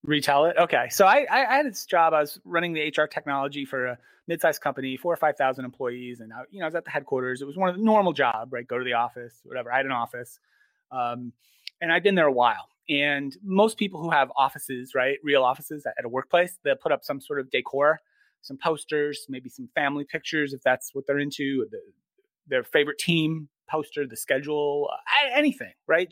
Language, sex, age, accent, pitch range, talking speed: English, male, 30-49, American, 140-190 Hz, 215 wpm